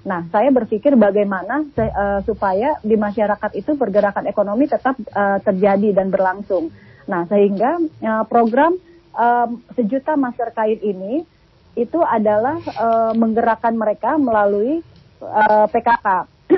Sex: female